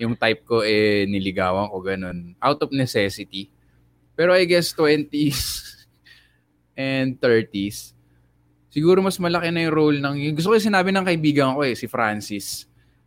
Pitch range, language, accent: 100-145 Hz, English, Filipino